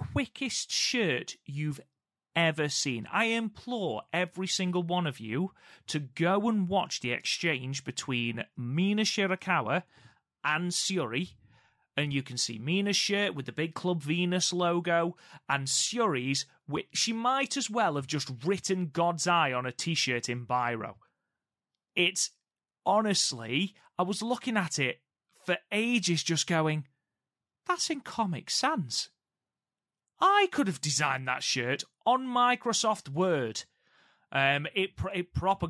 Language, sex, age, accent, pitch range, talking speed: English, male, 30-49, British, 125-185 Hz, 135 wpm